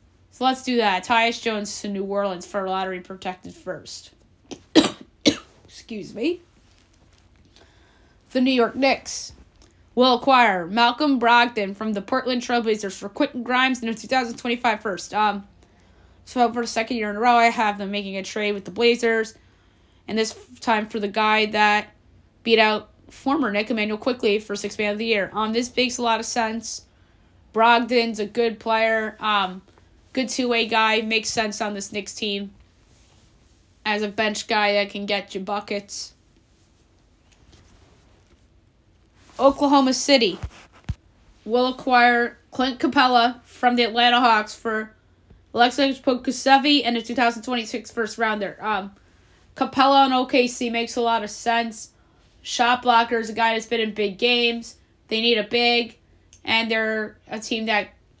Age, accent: 20-39, American